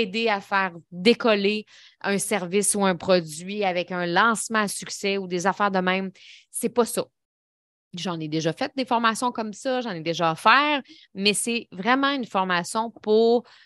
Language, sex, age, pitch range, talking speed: French, female, 20-39, 195-245 Hz, 180 wpm